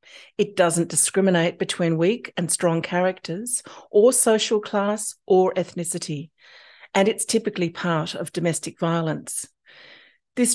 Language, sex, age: English, female, 40-59